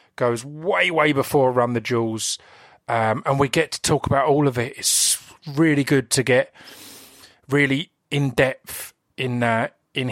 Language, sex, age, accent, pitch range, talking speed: English, male, 30-49, British, 125-155 Hz, 170 wpm